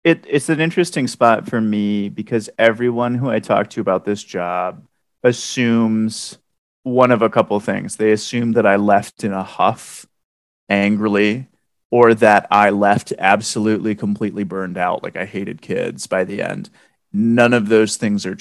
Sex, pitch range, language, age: male, 100-115 Hz, English, 30-49